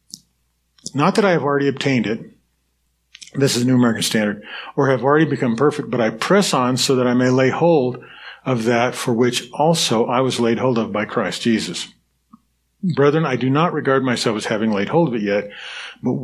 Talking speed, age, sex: 205 wpm, 40-59, male